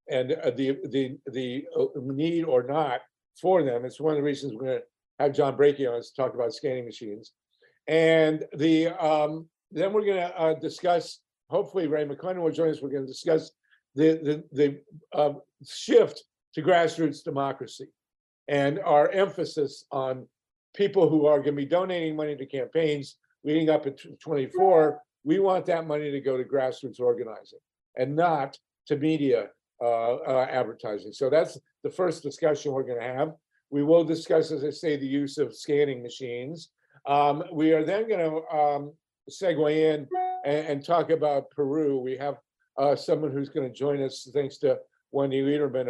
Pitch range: 135-160 Hz